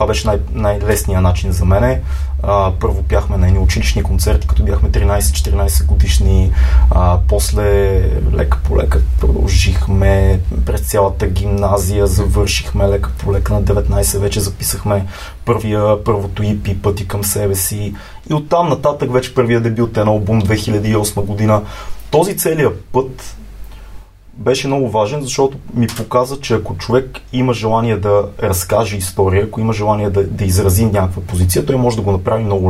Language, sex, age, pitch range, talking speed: Bulgarian, male, 20-39, 95-115 Hz, 145 wpm